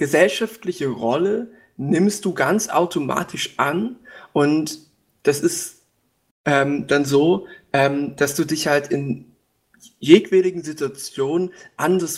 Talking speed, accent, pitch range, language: 110 wpm, German, 135-180 Hz, German